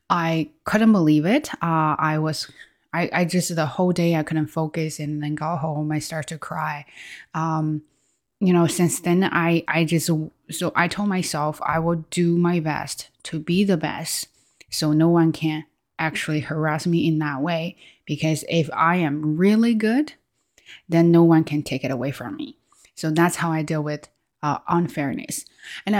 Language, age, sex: Chinese, 20-39, female